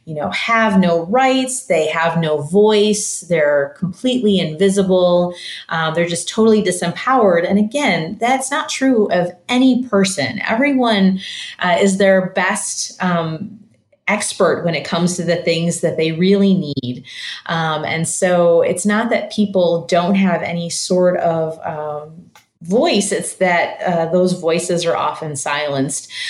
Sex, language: female, English